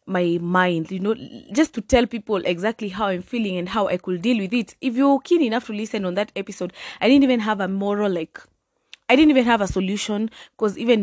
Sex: female